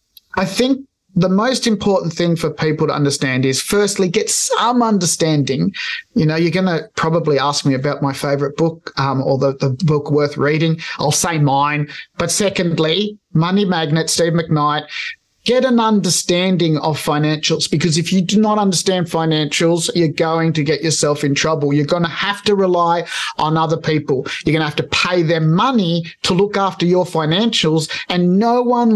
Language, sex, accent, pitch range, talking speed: English, male, Australian, 160-200 Hz, 180 wpm